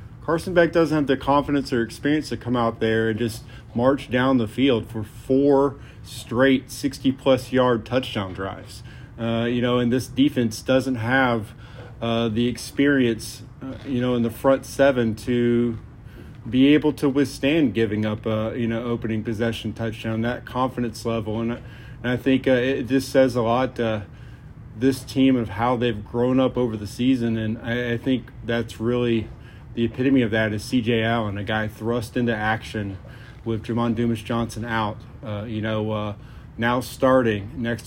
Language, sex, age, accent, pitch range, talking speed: English, male, 40-59, American, 115-130 Hz, 175 wpm